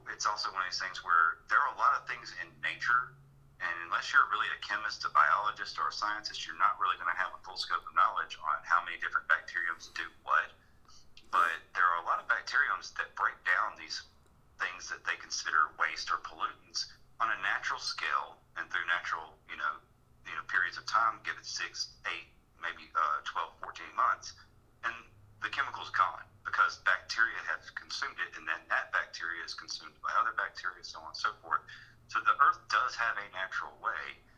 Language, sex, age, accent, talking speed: English, male, 40-59, American, 200 wpm